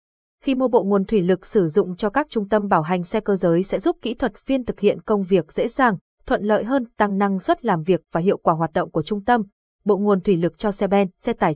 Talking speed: 275 wpm